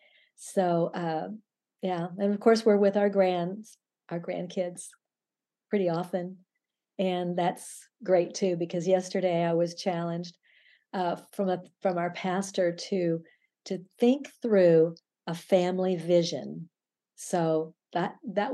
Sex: female